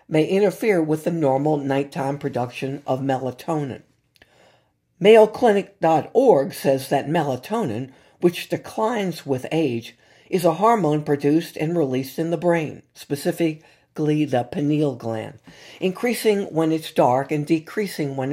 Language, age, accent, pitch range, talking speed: English, 60-79, American, 135-170 Hz, 120 wpm